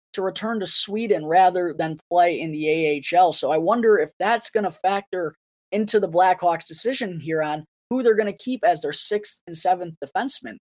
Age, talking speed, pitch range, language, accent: 20-39, 200 wpm, 160-210 Hz, English, American